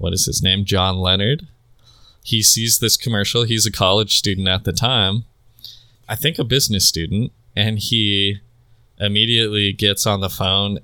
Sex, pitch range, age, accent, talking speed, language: male, 100-120 Hz, 20-39, American, 160 wpm, English